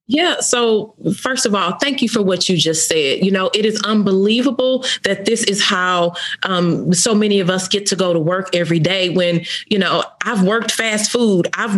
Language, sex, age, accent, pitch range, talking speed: English, female, 30-49, American, 195-245 Hz, 210 wpm